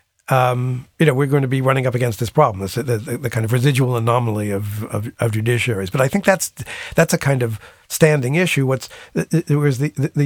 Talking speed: 210 wpm